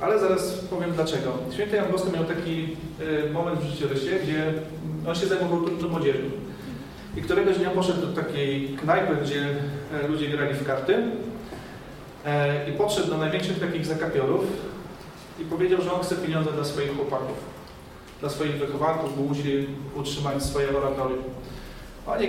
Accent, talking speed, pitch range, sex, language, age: native, 145 wpm, 140-170 Hz, male, Polish, 40-59